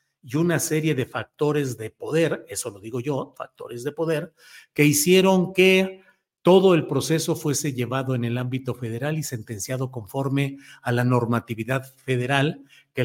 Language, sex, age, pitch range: Spanish, male, 50-69, 130-170 Hz